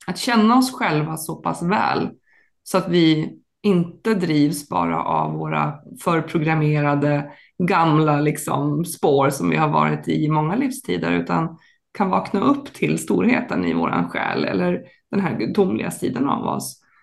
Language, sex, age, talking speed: Swedish, female, 20-39, 150 wpm